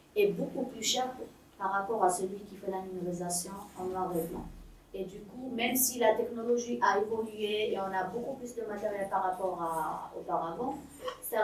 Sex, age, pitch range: female, 30-49, 190-245 Hz